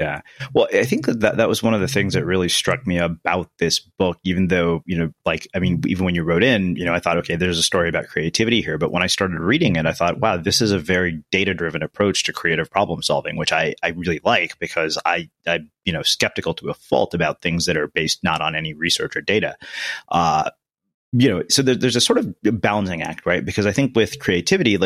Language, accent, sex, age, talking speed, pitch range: English, American, male, 30-49, 245 wpm, 85-100 Hz